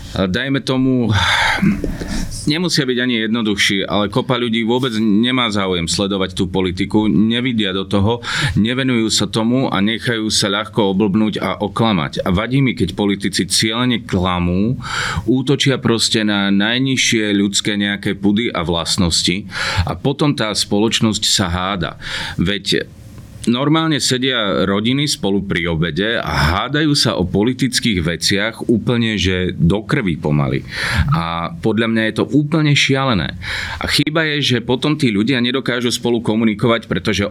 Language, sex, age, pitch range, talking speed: Slovak, male, 40-59, 100-120 Hz, 140 wpm